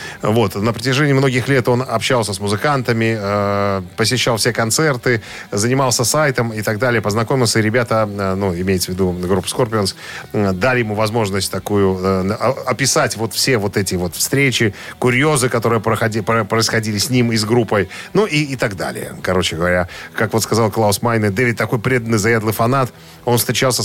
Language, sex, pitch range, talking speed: Russian, male, 100-125 Hz, 160 wpm